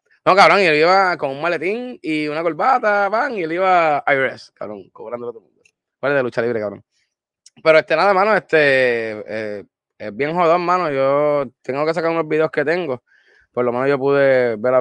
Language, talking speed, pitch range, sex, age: Spanish, 205 wpm, 115-145 Hz, male, 20-39